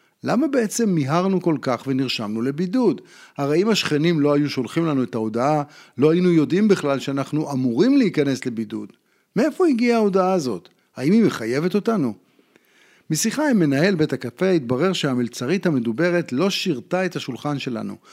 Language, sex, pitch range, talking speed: Hebrew, male, 135-190 Hz, 150 wpm